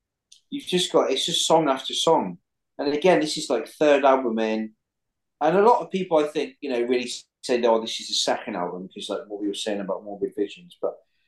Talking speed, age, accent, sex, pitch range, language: 230 wpm, 30-49, British, male, 105-150 Hz, English